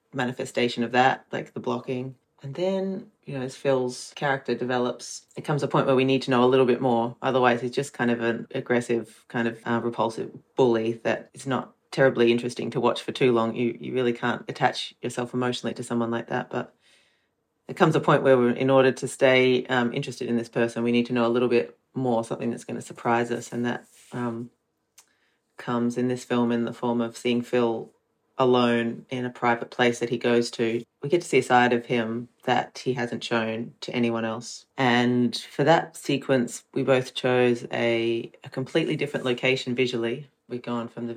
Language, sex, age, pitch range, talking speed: English, female, 30-49, 120-130 Hz, 210 wpm